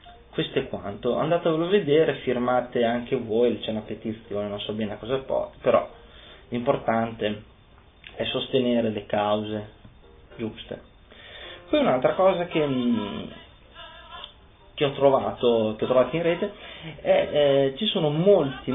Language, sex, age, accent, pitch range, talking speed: Italian, male, 30-49, native, 120-165 Hz, 135 wpm